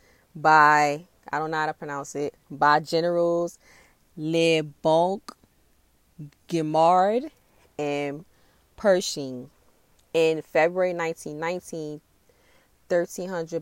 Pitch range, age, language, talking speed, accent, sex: 145-165 Hz, 20-39, English, 85 wpm, American, female